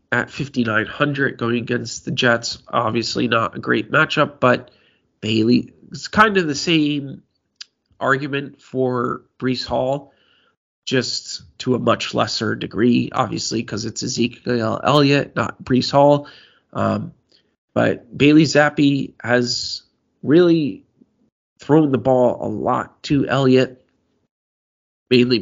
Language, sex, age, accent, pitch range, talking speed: English, male, 30-49, American, 120-145 Hz, 120 wpm